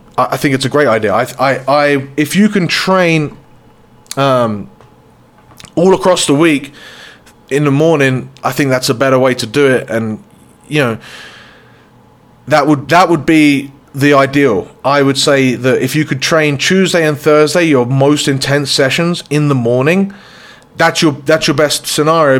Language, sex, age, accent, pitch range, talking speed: English, male, 30-49, British, 130-160 Hz, 170 wpm